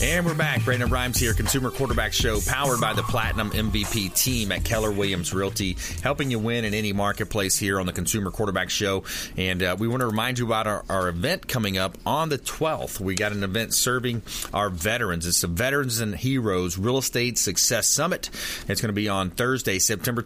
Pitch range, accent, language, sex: 95-120 Hz, American, English, male